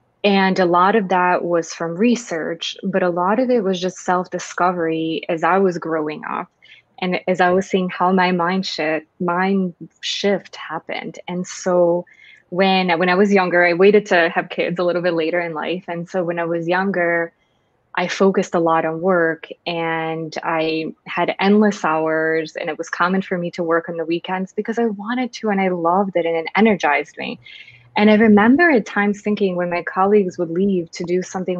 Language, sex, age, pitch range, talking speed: English, female, 20-39, 170-205 Hz, 200 wpm